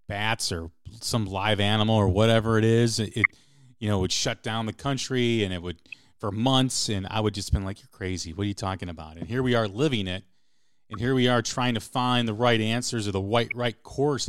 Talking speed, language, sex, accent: 230 wpm, English, male, American